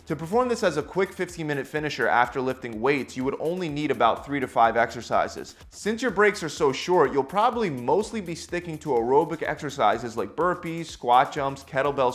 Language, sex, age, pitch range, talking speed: English, male, 20-39, 120-170 Hz, 200 wpm